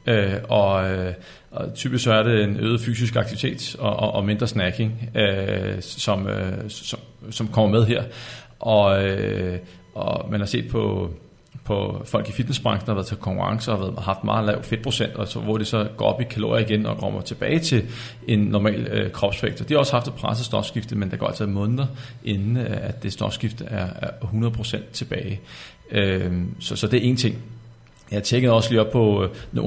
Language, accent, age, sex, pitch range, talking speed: Danish, native, 40-59, male, 100-120 Hz, 195 wpm